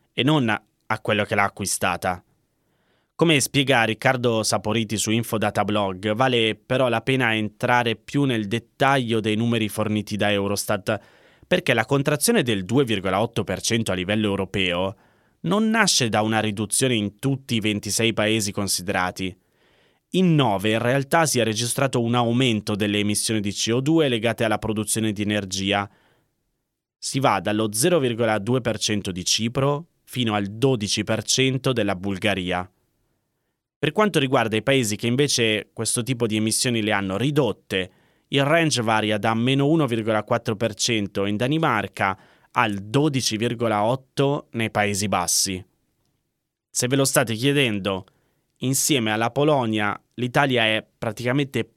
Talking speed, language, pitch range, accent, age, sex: 130 wpm, Italian, 105-130 Hz, native, 20-39, male